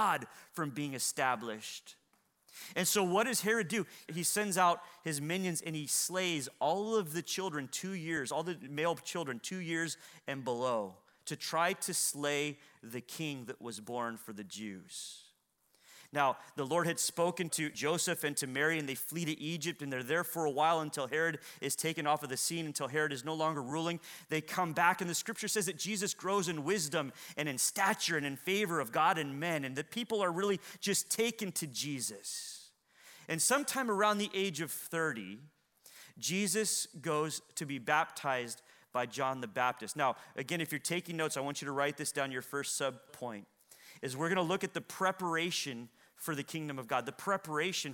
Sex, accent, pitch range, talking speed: male, American, 150-205 Hz, 195 wpm